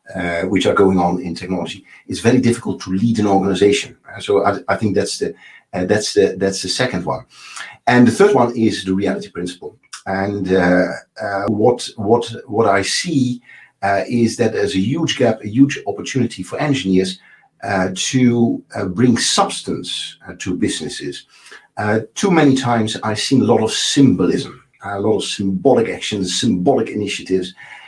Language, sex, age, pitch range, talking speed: English, male, 50-69, 95-120 Hz, 170 wpm